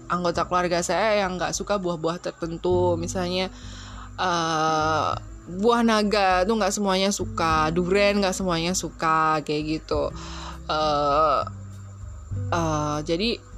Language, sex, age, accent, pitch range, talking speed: Indonesian, female, 20-39, native, 180-255 Hz, 110 wpm